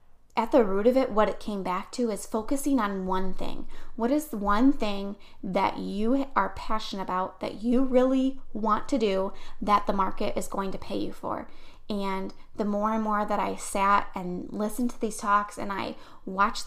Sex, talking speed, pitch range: female, 200 wpm, 195-235 Hz